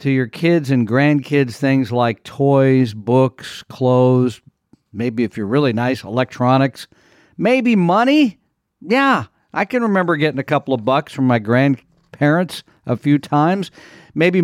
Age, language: 50-69, English